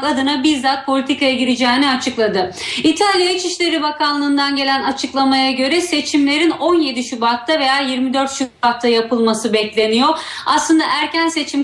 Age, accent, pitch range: 40-59, native, 250-290 Hz